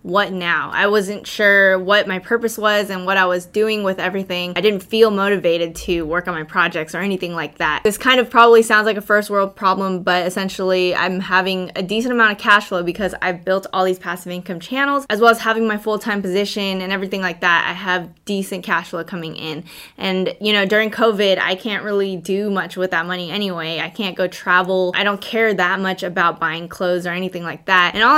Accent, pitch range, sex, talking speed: American, 180-210 Hz, female, 225 wpm